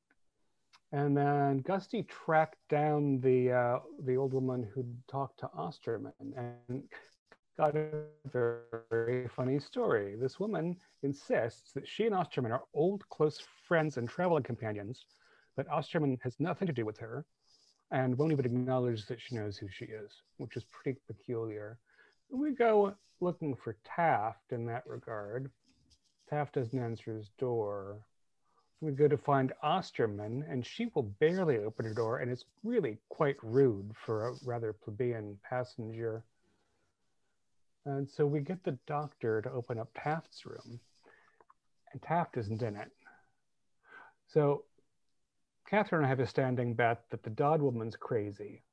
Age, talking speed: 40-59, 150 wpm